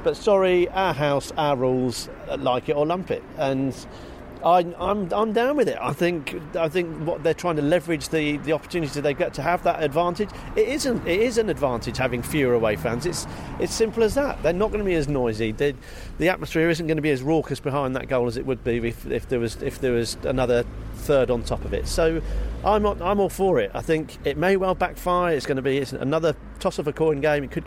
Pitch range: 125-165 Hz